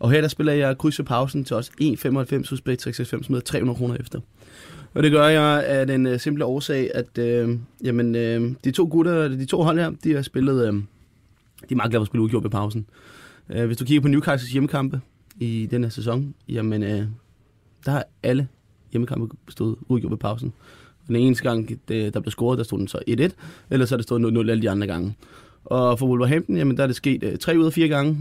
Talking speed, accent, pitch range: 215 wpm, native, 110-135 Hz